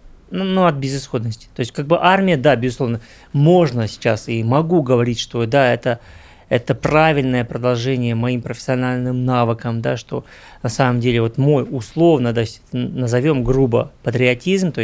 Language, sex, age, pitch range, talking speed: Russian, male, 30-49, 120-140 Hz, 145 wpm